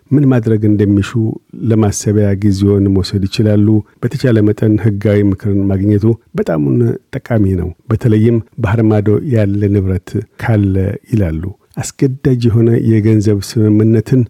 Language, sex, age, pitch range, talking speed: Amharic, male, 50-69, 105-120 Hz, 115 wpm